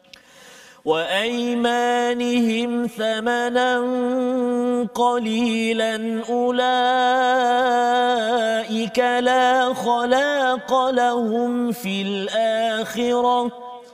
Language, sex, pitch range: Malayalam, male, 220-245 Hz